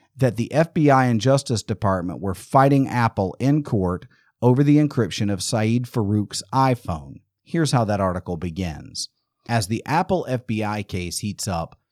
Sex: male